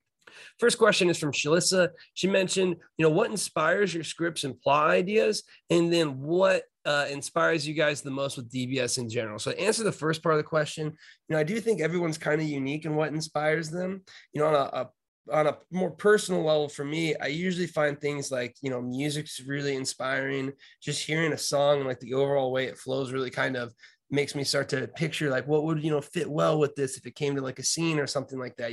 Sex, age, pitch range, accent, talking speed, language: male, 20-39, 135-160 Hz, American, 235 wpm, English